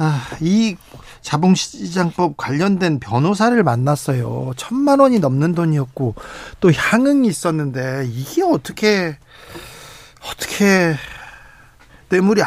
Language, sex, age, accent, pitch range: Korean, male, 40-59, native, 150-210 Hz